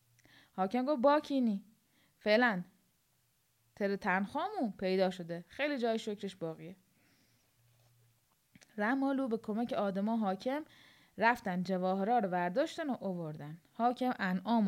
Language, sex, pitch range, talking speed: English, female, 185-245 Hz, 100 wpm